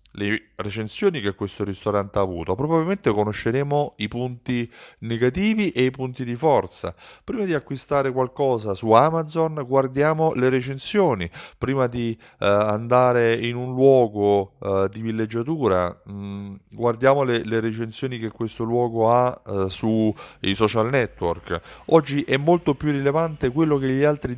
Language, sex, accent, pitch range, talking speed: Italian, male, native, 100-135 Hz, 145 wpm